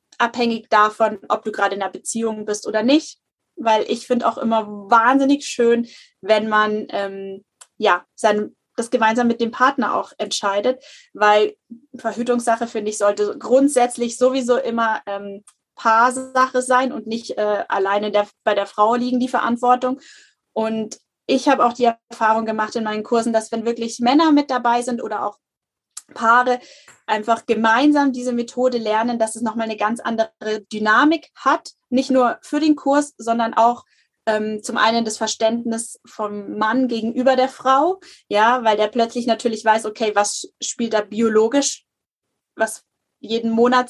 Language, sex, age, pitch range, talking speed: German, female, 20-39, 215-250 Hz, 155 wpm